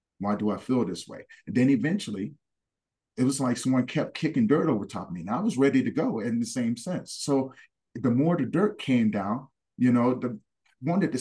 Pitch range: 95-130 Hz